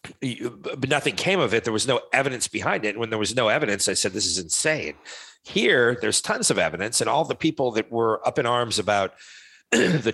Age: 50-69